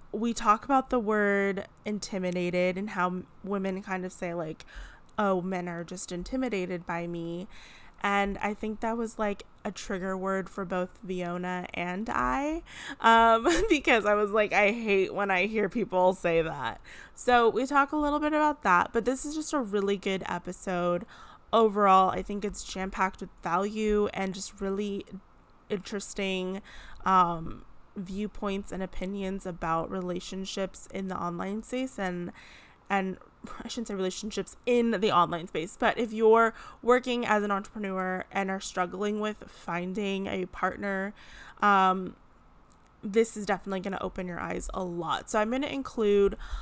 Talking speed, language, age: 160 wpm, English, 20-39